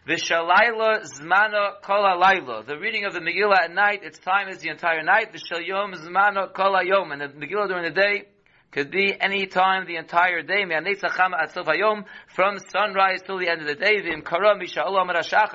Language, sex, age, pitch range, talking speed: English, male, 40-59, 170-205 Hz, 195 wpm